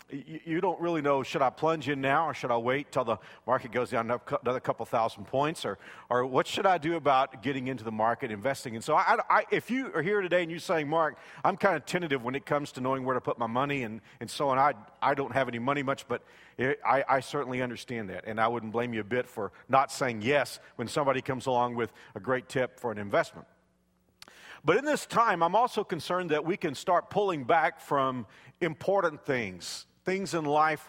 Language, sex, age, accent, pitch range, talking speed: English, male, 50-69, American, 130-160 Hz, 235 wpm